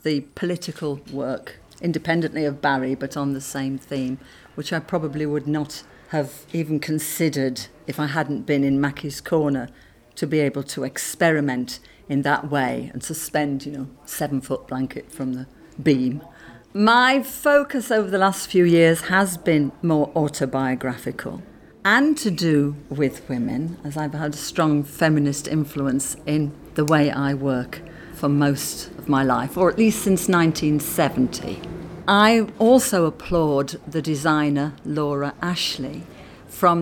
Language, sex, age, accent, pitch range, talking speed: English, female, 50-69, British, 140-165 Hz, 150 wpm